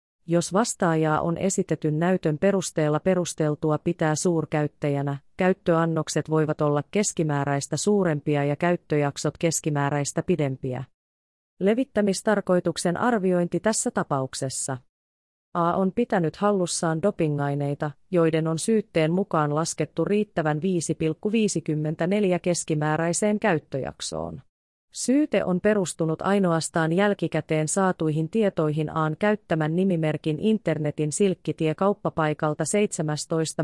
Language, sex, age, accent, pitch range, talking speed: Finnish, female, 30-49, native, 150-185 Hz, 85 wpm